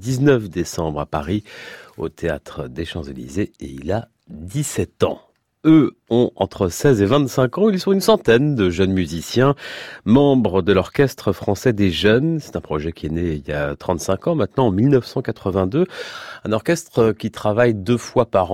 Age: 30-49